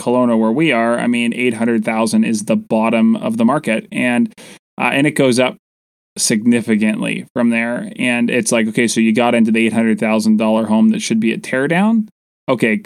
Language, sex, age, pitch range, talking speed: English, male, 20-39, 115-150 Hz, 205 wpm